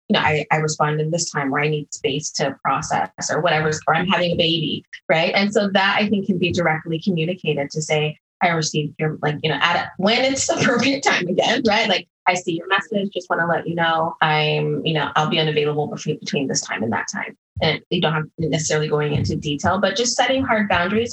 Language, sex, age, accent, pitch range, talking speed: English, female, 20-39, American, 155-195 Hz, 240 wpm